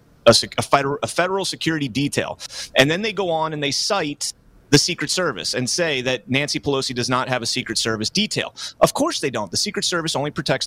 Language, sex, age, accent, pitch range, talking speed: English, male, 30-49, American, 125-170 Hz, 200 wpm